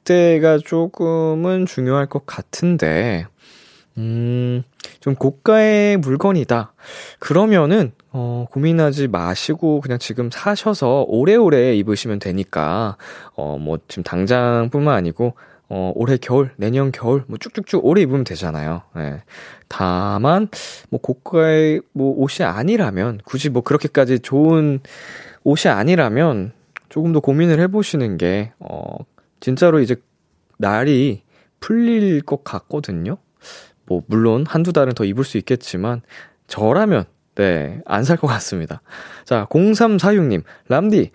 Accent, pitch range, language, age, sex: native, 115-165 Hz, Korean, 20-39, male